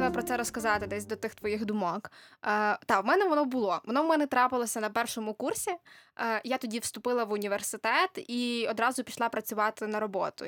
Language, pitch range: Ukrainian, 215-270 Hz